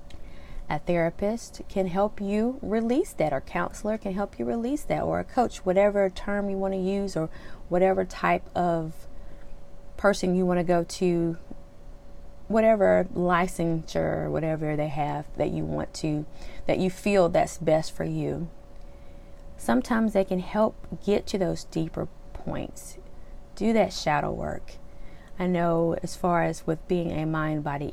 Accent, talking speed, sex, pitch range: American, 155 wpm, female, 150-200 Hz